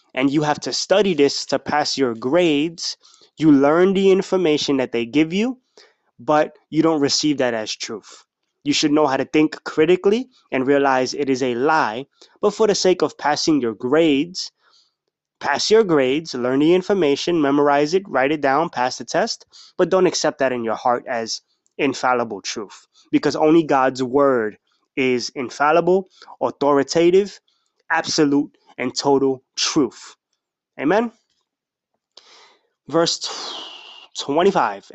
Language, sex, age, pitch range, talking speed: English, male, 20-39, 135-185 Hz, 145 wpm